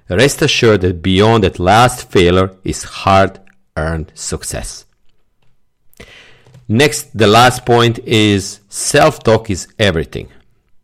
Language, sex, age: English, male, 50-69